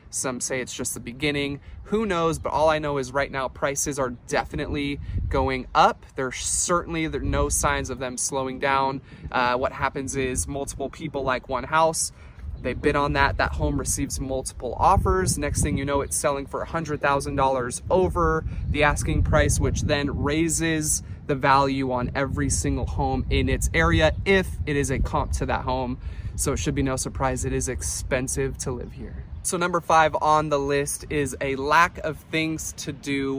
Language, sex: English, male